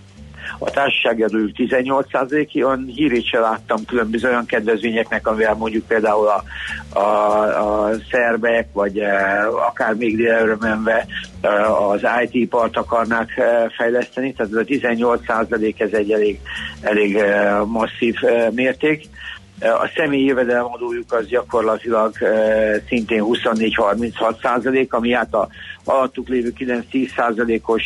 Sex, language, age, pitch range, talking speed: male, Hungarian, 60-79, 110-125 Hz, 110 wpm